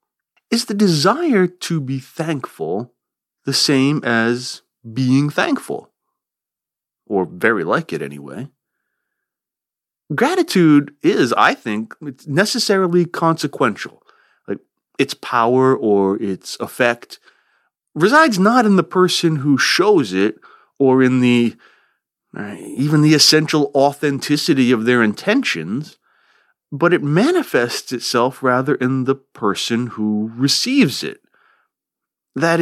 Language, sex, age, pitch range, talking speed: English, male, 30-49, 115-170 Hz, 110 wpm